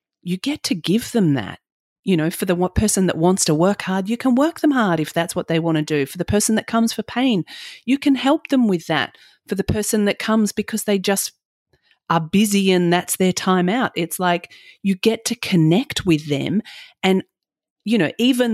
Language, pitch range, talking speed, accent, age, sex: English, 150-225 Hz, 220 wpm, Australian, 40-59, female